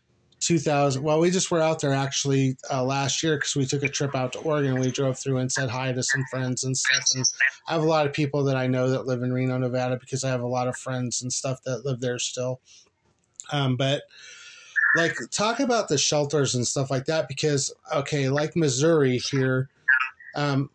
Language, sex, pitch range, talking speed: English, male, 135-155 Hz, 215 wpm